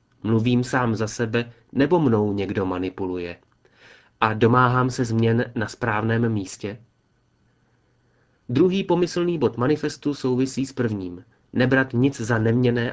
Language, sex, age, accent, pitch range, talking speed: Czech, male, 30-49, native, 105-135 Hz, 120 wpm